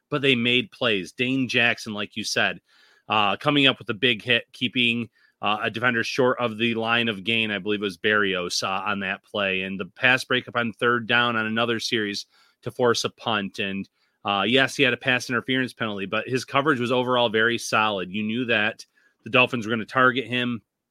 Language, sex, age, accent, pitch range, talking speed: English, male, 30-49, American, 110-125 Hz, 210 wpm